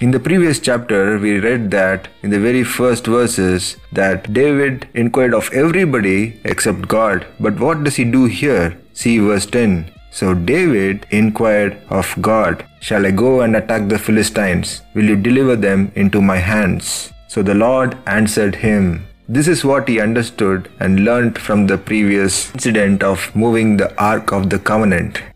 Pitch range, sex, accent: 100-125 Hz, male, Indian